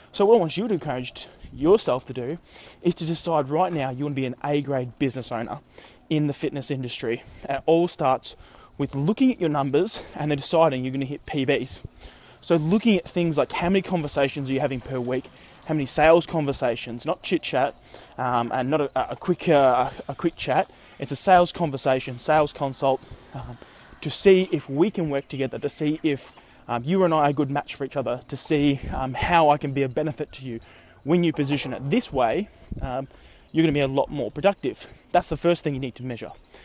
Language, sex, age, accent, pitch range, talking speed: English, male, 20-39, Australian, 135-170 Hz, 220 wpm